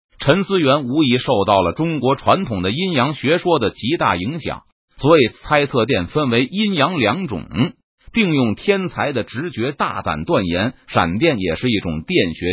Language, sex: Chinese, male